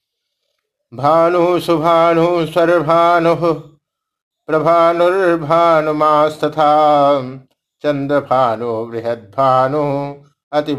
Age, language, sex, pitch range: 60-79, Hindi, male, 125-155 Hz